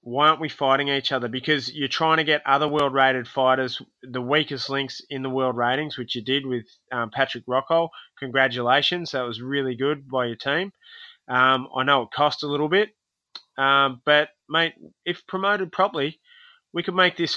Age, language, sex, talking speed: 20-39, English, male, 185 wpm